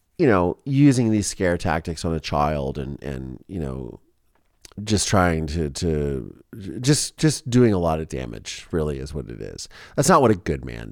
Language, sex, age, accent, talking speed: English, male, 30-49, American, 190 wpm